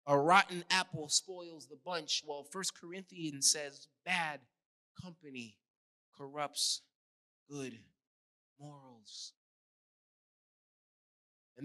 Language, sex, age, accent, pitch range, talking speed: English, male, 20-39, American, 125-175 Hz, 80 wpm